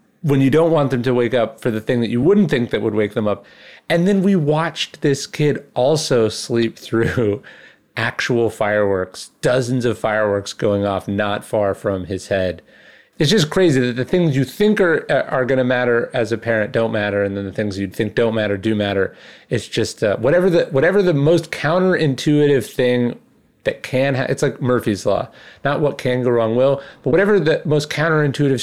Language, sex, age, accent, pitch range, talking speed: English, male, 30-49, American, 105-140 Hz, 205 wpm